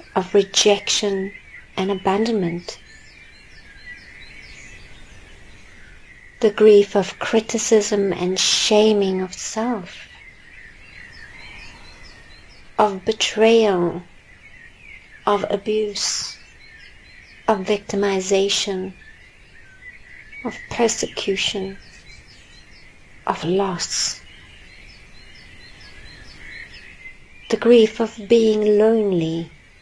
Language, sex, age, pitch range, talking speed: English, female, 30-49, 190-220 Hz, 55 wpm